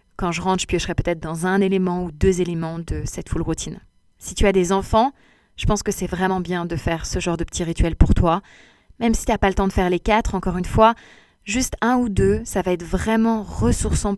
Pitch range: 170-210 Hz